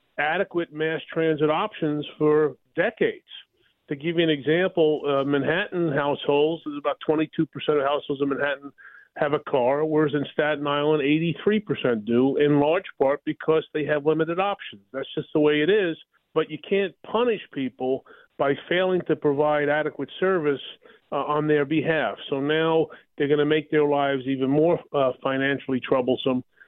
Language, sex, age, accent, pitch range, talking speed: English, male, 40-59, American, 145-165 Hz, 165 wpm